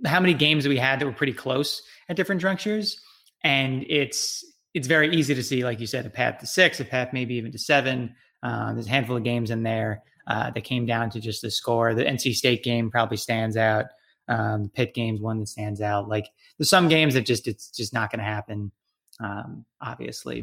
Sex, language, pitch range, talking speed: male, English, 110-135 Hz, 220 wpm